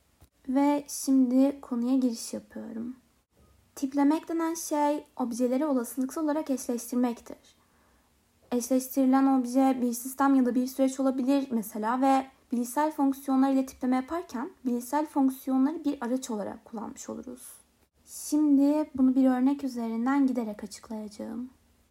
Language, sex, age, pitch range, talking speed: Turkish, female, 20-39, 240-285 Hz, 115 wpm